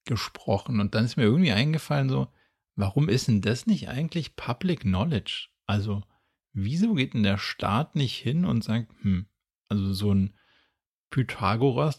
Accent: German